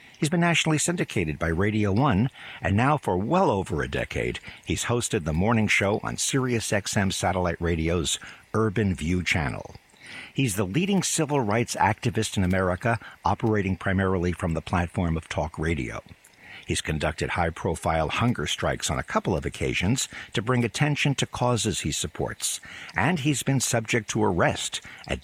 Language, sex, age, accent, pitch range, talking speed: English, male, 60-79, American, 85-120 Hz, 160 wpm